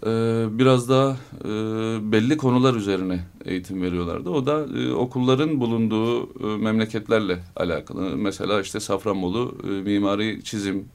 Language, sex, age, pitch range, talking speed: Turkish, male, 30-49, 95-110 Hz, 125 wpm